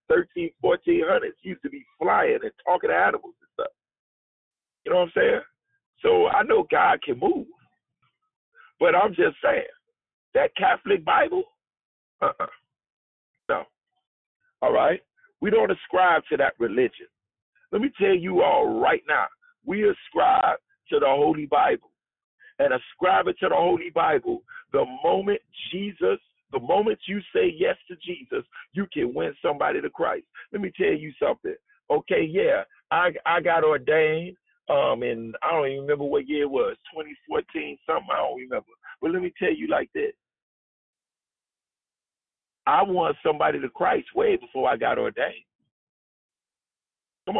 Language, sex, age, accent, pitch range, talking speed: English, male, 50-69, American, 275-445 Hz, 150 wpm